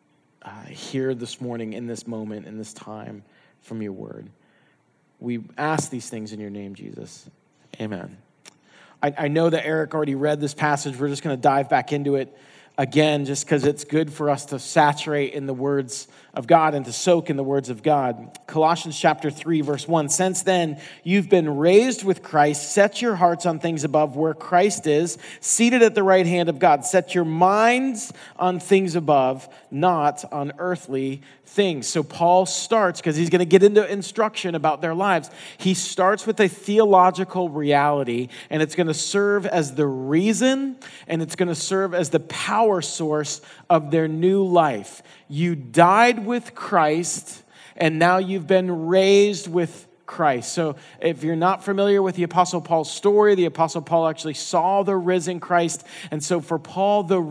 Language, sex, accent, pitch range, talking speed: English, male, American, 145-185 Hz, 180 wpm